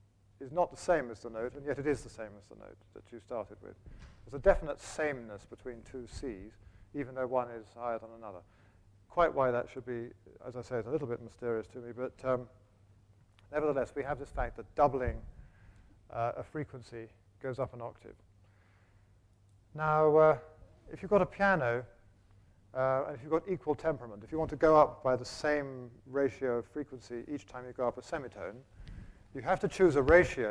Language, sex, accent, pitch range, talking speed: English, male, British, 105-140 Hz, 205 wpm